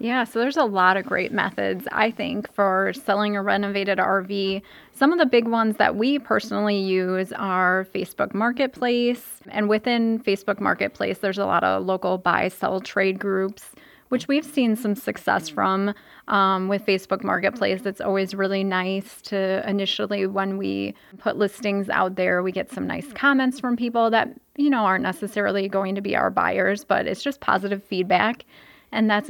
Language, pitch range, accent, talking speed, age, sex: English, 195-225 Hz, American, 175 wpm, 20-39, female